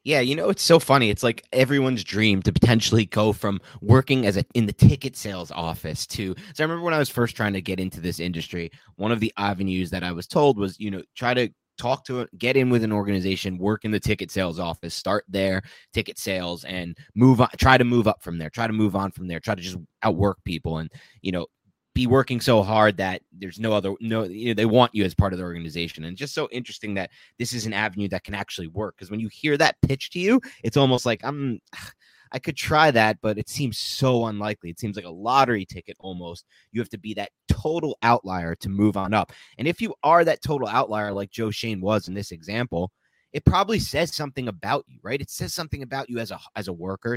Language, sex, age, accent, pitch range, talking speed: English, male, 20-39, American, 95-125 Hz, 245 wpm